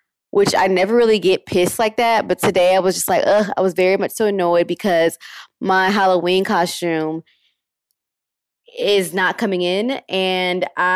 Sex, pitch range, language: female, 170-200 Hz, English